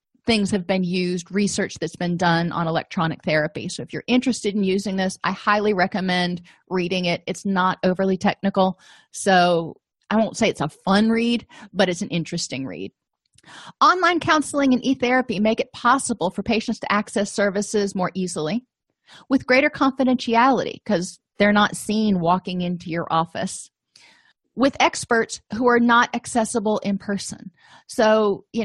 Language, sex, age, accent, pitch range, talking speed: English, female, 30-49, American, 180-225 Hz, 155 wpm